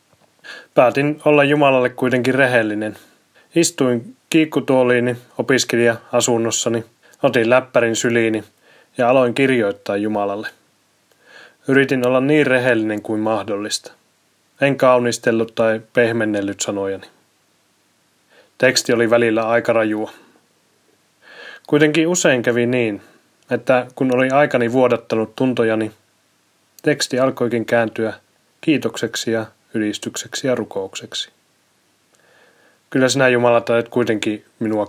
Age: 20-39